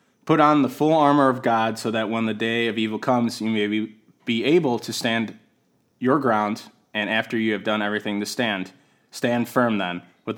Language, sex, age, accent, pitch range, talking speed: English, male, 20-39, American, 105-125 Hz, 200 wpm